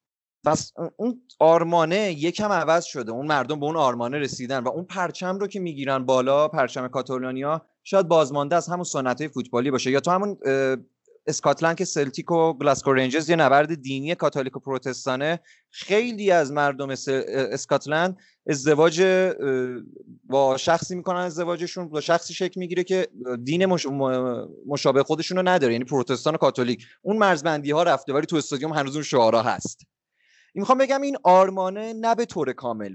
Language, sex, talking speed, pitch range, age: Persian, male, 145 wpm, 135-180 Hz, 30-49